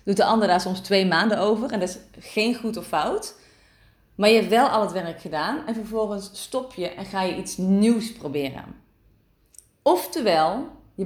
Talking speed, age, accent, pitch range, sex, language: 190 wpm, 30-49, Dutch, 185-240 Hz, female, Dutch